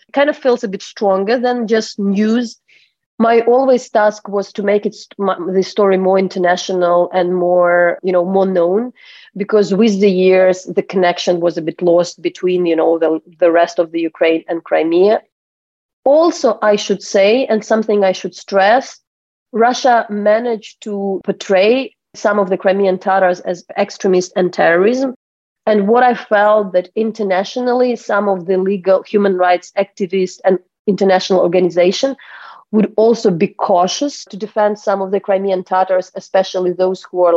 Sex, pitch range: female, 180-215 Hz